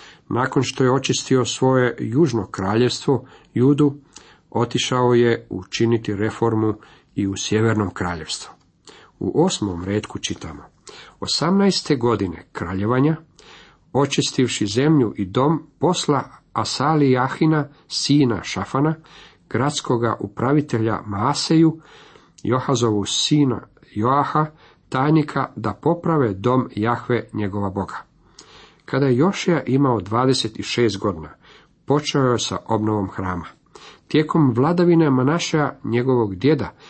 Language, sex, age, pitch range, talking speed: Croatian, male, 50-69, 110-145 Hz, 100 wpm